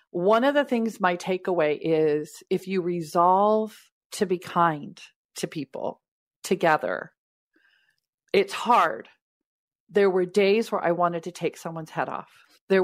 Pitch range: 170-220 Hz